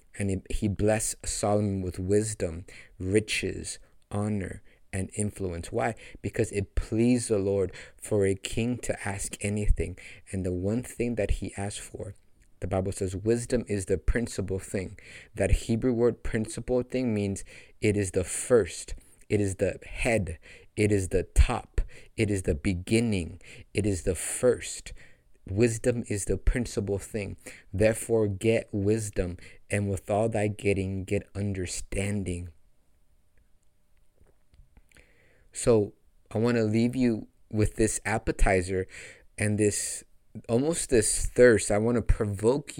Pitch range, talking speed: 95-110 Hz, 135 wpm